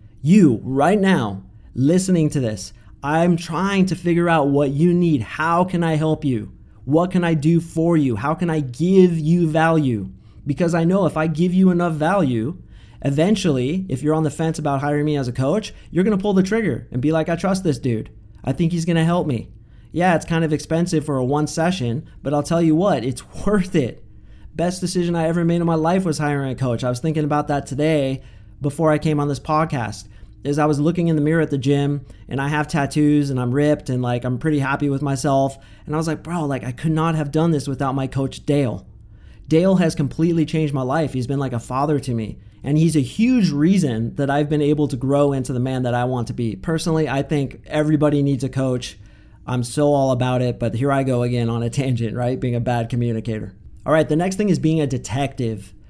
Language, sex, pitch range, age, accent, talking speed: English, male, 125-160 Hz, 30-49, American, 235 wpm